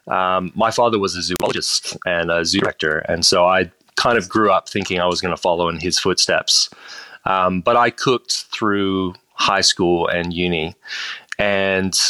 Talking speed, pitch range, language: 180 wpm, 90-105 Hz, English